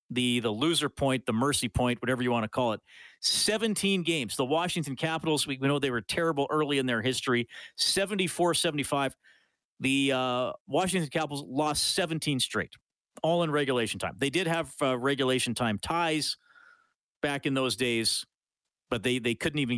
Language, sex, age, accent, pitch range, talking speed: English, male, 50-69, American, 120-160 Hz, 170 wpm